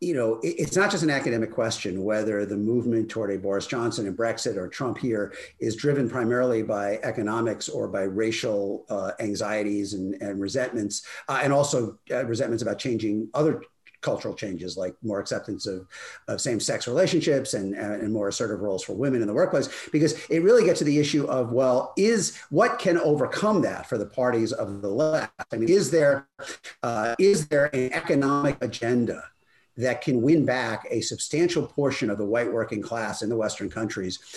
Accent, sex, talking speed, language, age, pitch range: American, male, 185 wpm, English, 50-69, 110-145 Hz